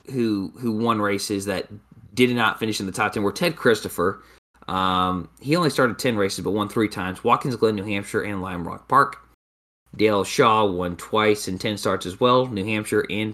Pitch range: 80-105 Hz